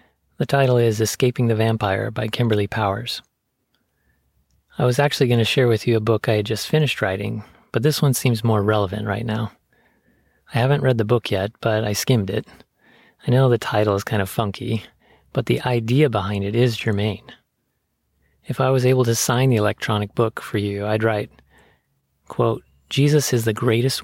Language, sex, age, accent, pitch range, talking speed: English, male, 30-49, American, 105-125 Hz, 185 wpm